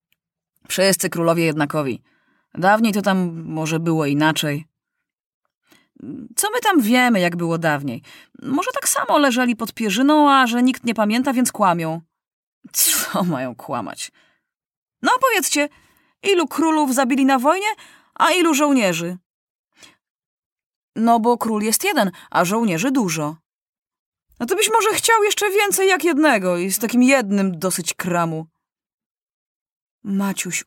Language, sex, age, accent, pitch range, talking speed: Polish, female, 30-49, native, 160-250 Hz, 130 wpm